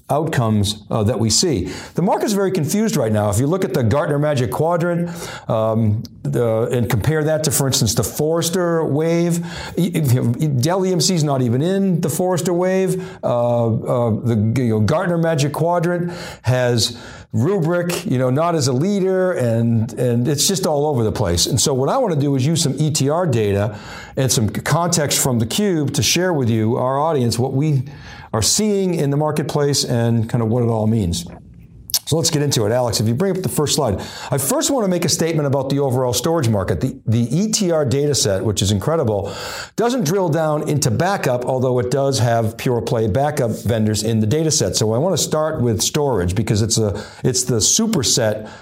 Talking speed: 205 wpm